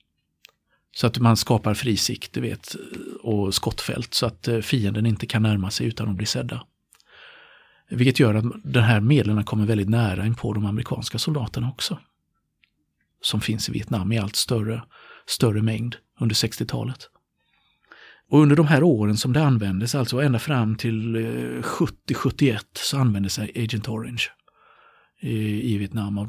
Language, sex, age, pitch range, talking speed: Swedish, male, 50-69, 105-135 Hz, 150 wpm